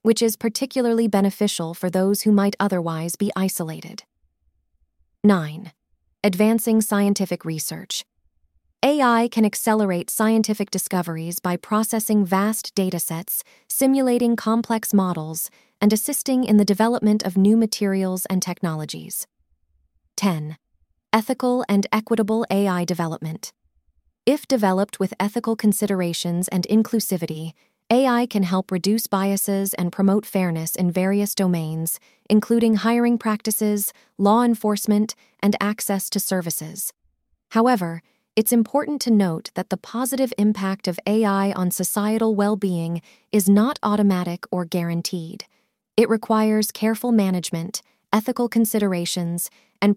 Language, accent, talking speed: English, American, 115 wpm